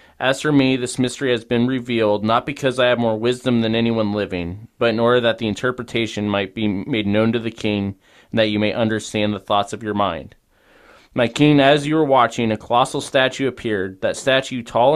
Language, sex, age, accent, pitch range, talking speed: English, male, 20-39, American, 105-130 Hz, 215 wpm